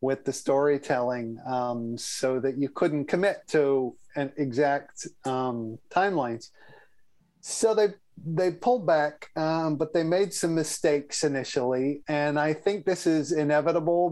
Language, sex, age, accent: English, male, 40-59, American